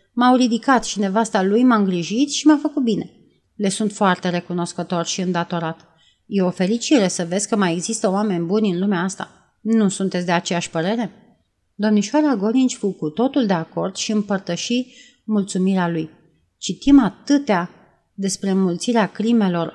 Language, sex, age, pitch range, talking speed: Romanian, female, 30-49, 180-235 Hz, 155 wpm